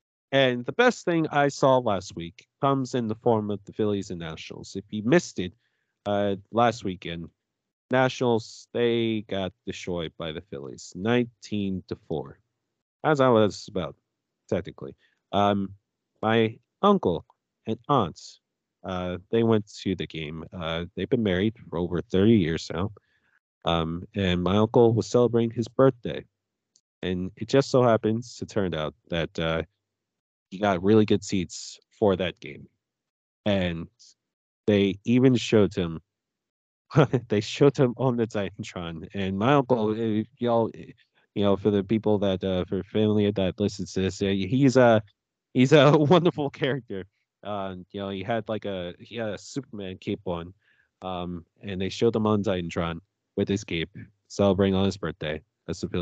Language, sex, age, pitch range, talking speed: English, male, 30-49, 90-115 Hz, 160 wpm